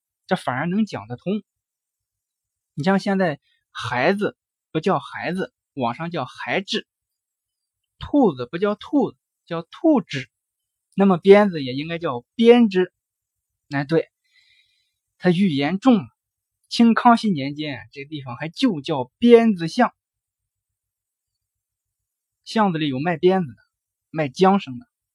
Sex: male